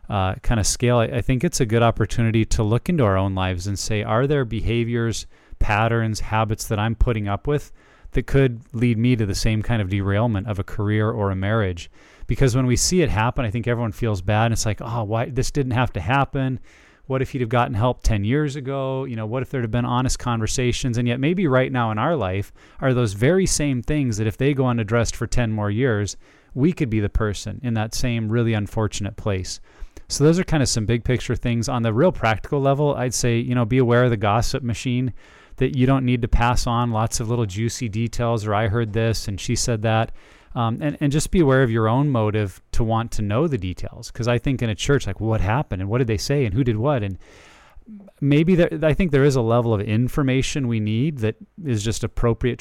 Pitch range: 110-130 Hz